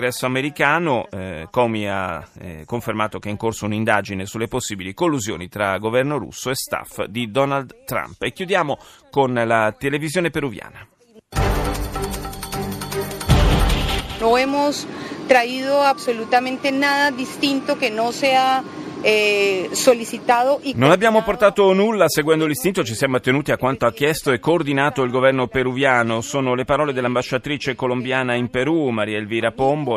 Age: 30-49